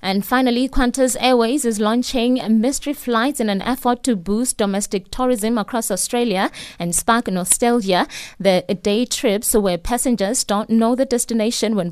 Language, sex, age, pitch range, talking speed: English, female, 20-39, 195-235 Hz, 150 wpm